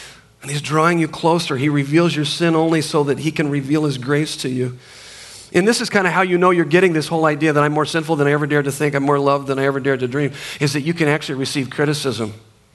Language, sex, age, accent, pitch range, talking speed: English, male, 40-59, American, 130-160 Hz, 275 wpm